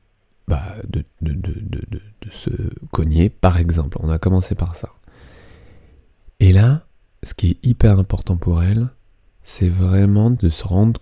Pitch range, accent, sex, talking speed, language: 85-105 Hz, French, male, 135 wpm, French